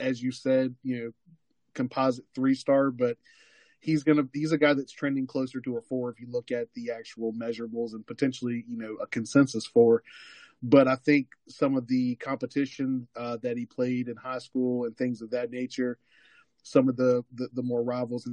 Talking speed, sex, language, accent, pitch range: 205 wpm, male, English, American, 115-130 Hz